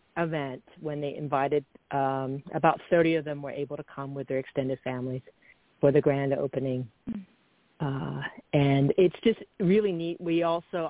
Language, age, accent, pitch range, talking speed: English, 40-59, American, 135-160 Hz, 160 wpm